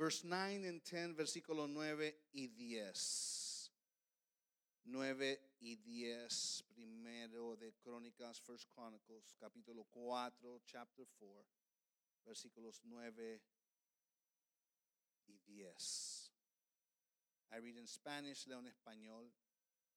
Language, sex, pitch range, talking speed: English, male, 120-175 Hz, 95 wpm